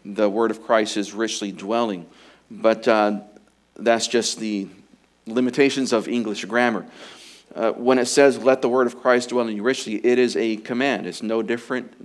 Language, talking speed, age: English, 180 wpm, 40-59